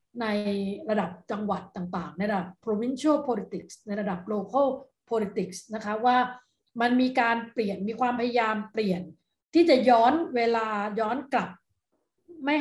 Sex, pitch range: female, 190-245 Hz